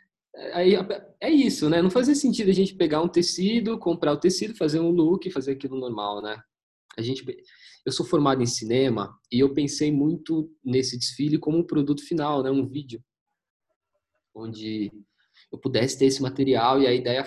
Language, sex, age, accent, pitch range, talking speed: English, male, 20-39, Brazilian, 115-155 Hz, 180 wpm